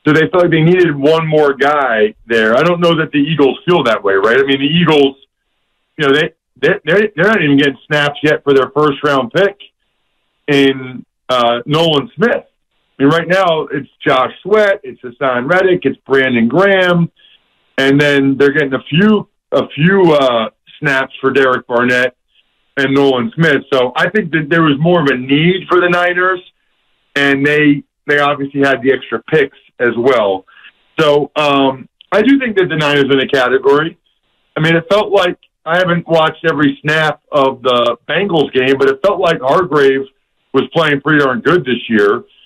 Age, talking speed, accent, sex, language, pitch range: 50-69, 185 wpm, American, male, English, 135-180 Hz